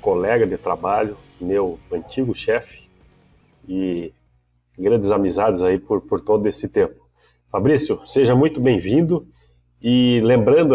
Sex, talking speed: male, 115 wpm